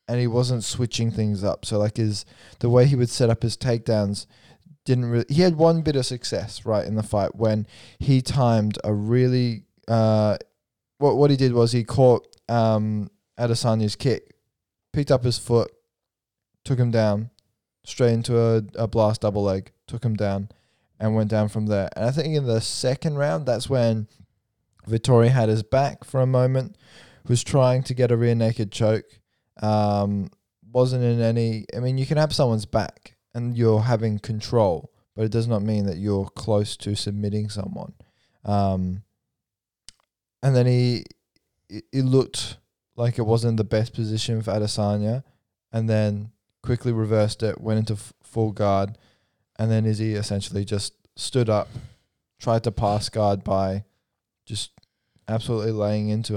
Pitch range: 105-120 Hz